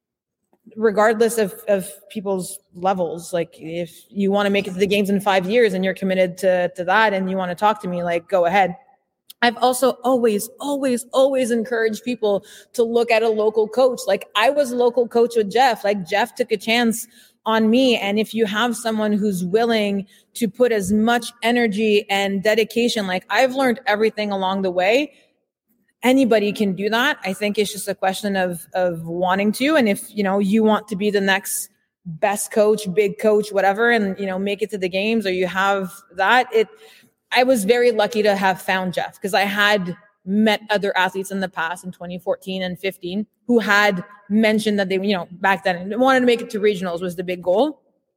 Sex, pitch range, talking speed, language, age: female, 190-225 Hz, 205 wpm, English, 30-49